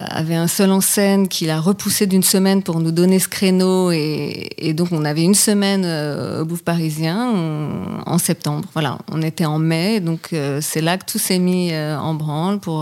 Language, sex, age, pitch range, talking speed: French, female, 30-49, 155-185 Hz, 215 wpm